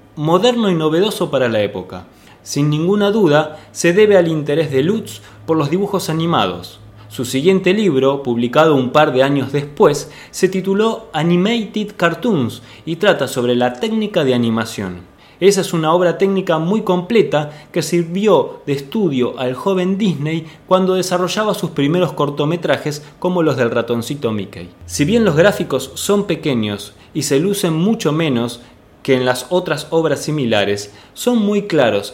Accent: Argentinian